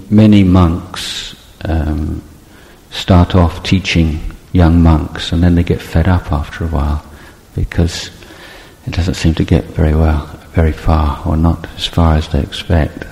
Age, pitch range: 50-69, 80-95 Hz